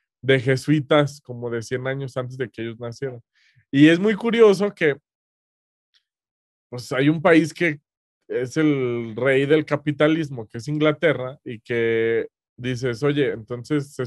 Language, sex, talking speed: Spanish, male, 150 wpm